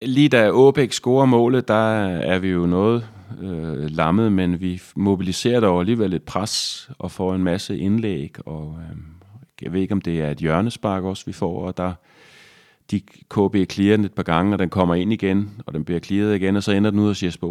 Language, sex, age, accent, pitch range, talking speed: Danish, male, 30-49, native, 85-100 Hz, 210 wpm